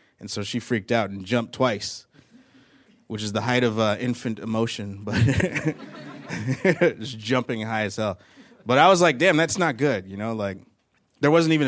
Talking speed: 185 wpm